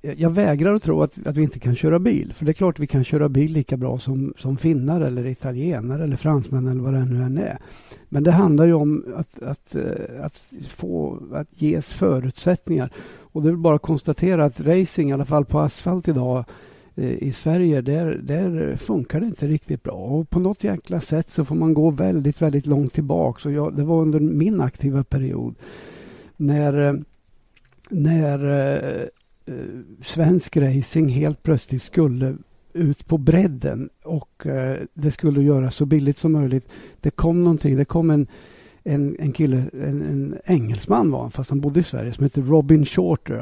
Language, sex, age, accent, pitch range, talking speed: Swedish, male, 60-79, native, 135-160 Hz, 175 wpm